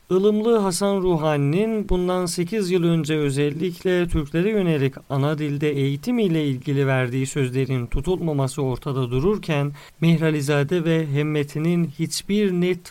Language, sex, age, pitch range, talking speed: Turkish, male, 50-69, 145-190 Hz, 120 wpm